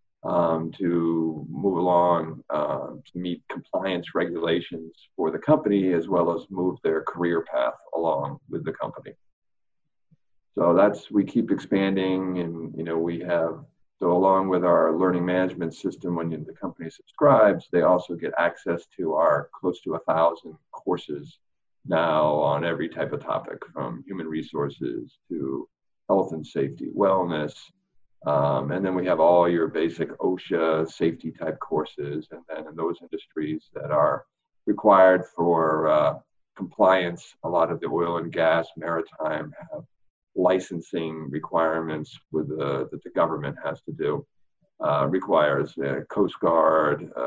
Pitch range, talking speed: 80-90 Hz, 145 wpm